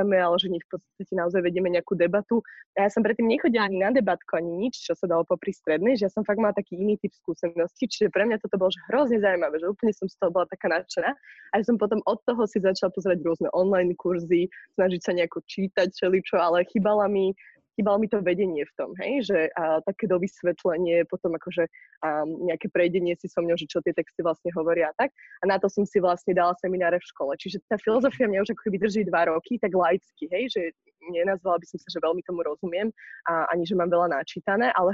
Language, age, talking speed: Slovak, 20-39, 230 wpm